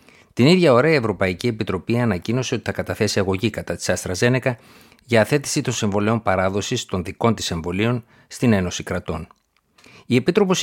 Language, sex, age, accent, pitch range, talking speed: Greek, male, 50-69, native, 95-120 Hz, 160 wpm